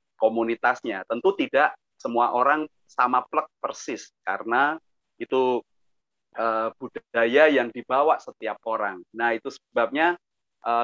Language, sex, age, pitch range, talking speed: Indonesian, male, 30-49, 110-155 Hz, 110 wpm